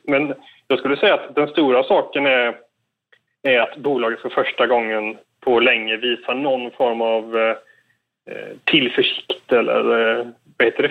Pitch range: 120-145 Hz